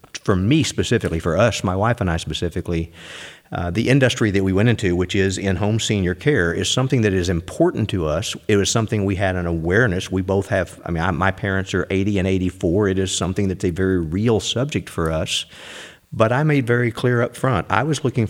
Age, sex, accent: 50-69, male, American